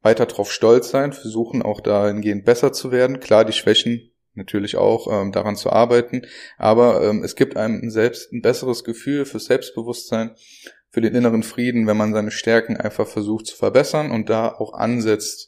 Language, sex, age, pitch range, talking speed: German, male, 20-39, 110-125 Hz, 180 wpm